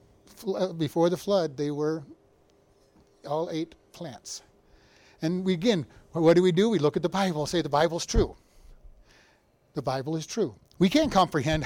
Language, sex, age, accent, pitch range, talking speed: English, male, 40-59, American, 150-185 Hz, 160 wpm